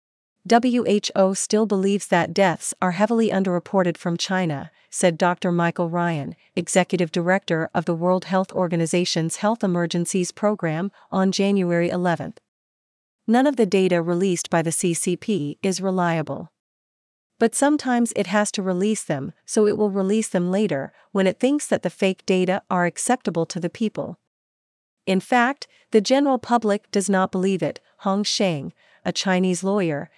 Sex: female